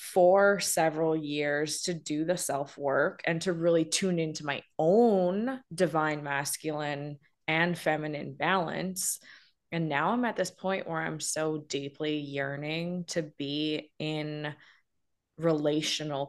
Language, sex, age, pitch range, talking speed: English, female, 20-39, 150-180 Hz, 125 wpm